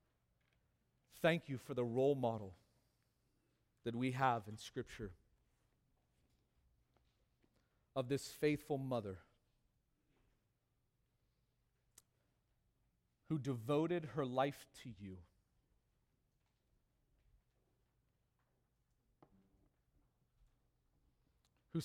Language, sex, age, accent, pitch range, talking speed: English, male, 40-59, American, 110-145 Hz, 60 wpm